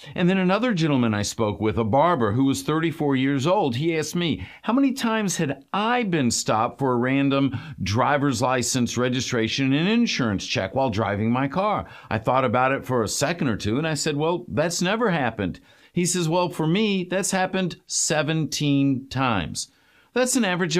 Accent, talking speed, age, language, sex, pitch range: American, 190 wpm, 50-69, English, male, 130-185 Hz